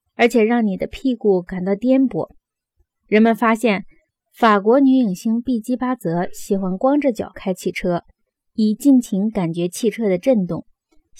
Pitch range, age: 190-250 Hz, 20-39